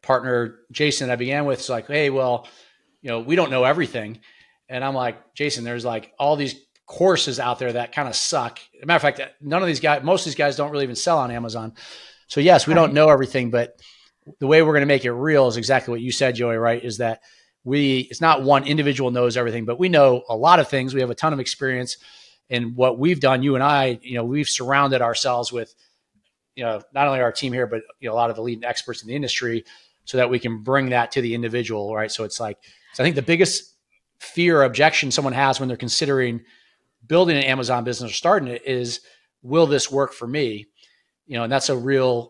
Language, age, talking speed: English, 40-59, 240 wpm